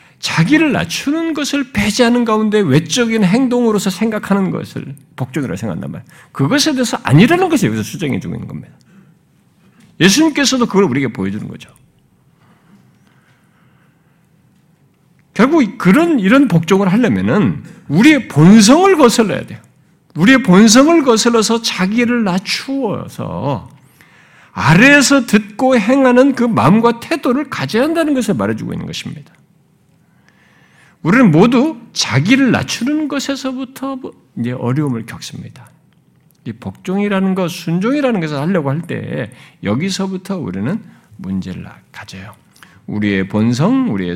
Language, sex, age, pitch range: Korean, male, 50-69, 145-240 Hz